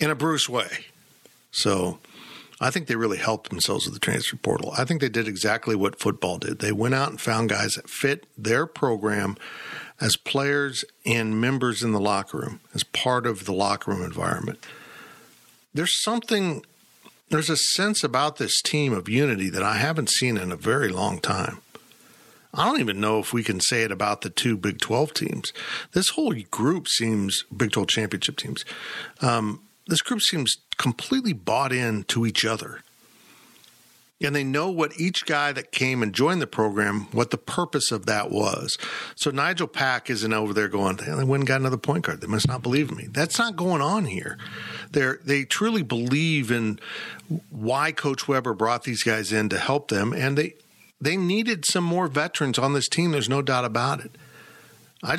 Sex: male